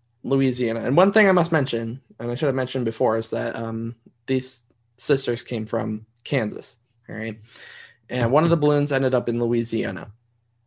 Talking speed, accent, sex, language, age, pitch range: 180 wpm, American, male, English, 20-39, 115-140 Hz